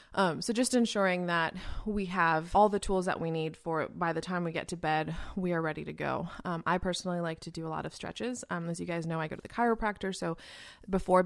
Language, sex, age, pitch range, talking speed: English, female, 20-39, 160-185 Hz, 255 wpm